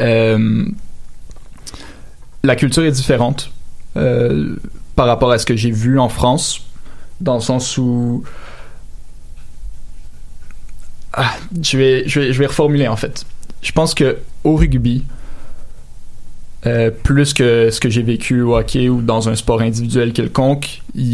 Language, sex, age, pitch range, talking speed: French, male, 20-39, 115-130 Hz, 140 wpm